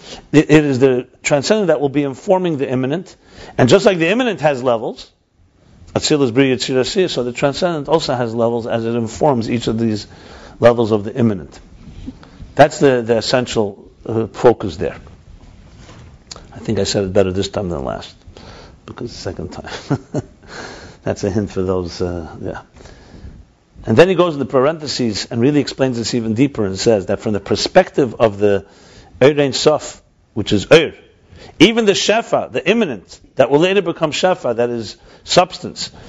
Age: 60-79